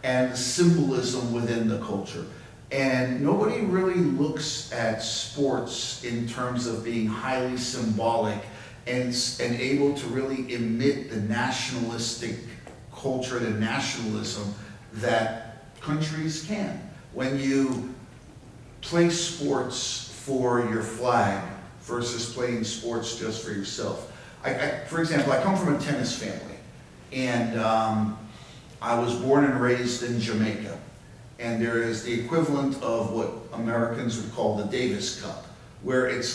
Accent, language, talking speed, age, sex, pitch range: American, English, 130 wpm, 50-69, male, 115-135 Hz